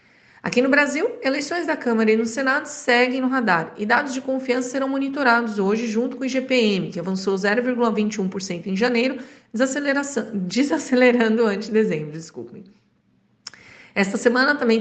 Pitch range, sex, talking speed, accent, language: 225-265 Hz, female, 150 wpm, Brazilian, Portuguese